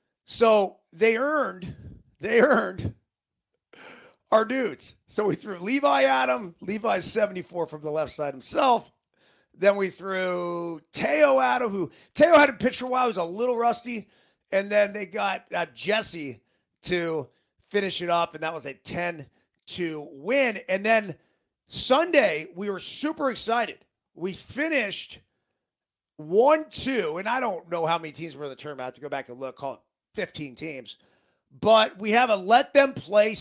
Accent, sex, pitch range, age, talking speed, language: American, male, 170-235 Hz, 30-49, 165 wpm, English